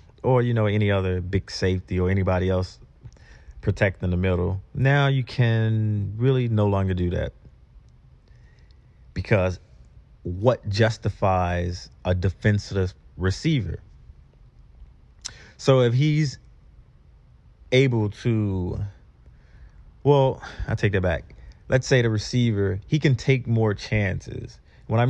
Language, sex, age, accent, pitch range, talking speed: English, male, 30-49, American, 95-115 Hz, 115 wpm